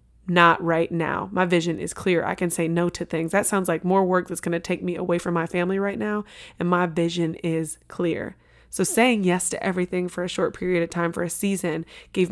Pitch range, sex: 165-185 Hz, female